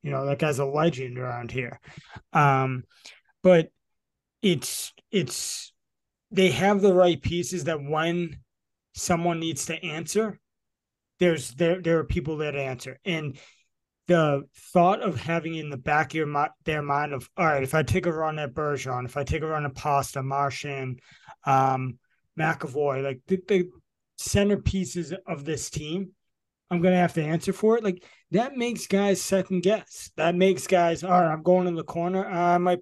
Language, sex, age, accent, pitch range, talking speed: English, male, 20-39, American, 145-180 Hz, 175 wpm